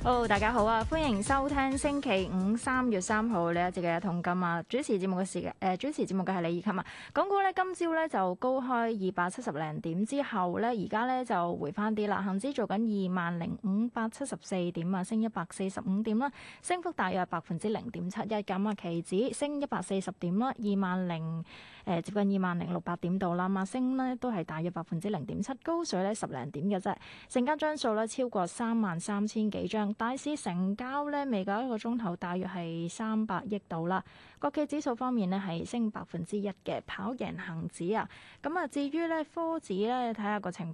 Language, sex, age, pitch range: Chinese, female, 20-39, 185-240 Hz